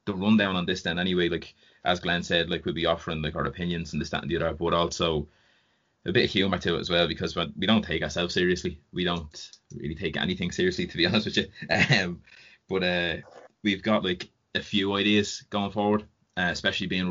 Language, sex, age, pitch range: English, male, 20-39, 85-95 Hz